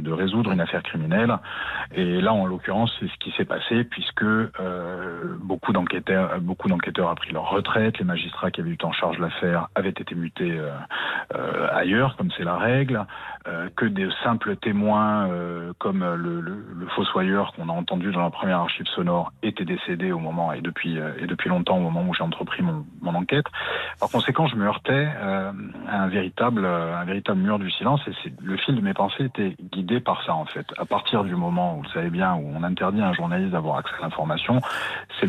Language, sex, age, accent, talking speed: French, male, 40-59, French, 215 wpm